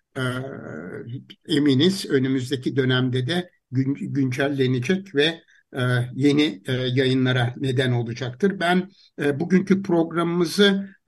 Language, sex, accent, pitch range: Turkish, male, native, 140-180 Hz